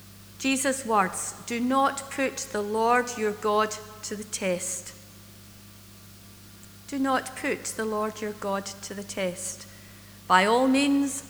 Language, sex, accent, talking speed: English, female, British, 135 wpm